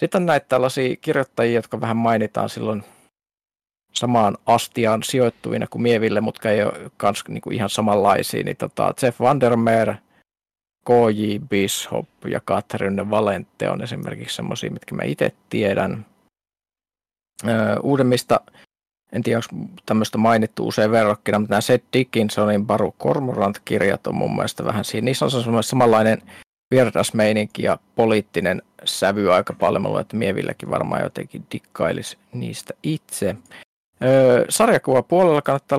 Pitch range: 105-130 Hz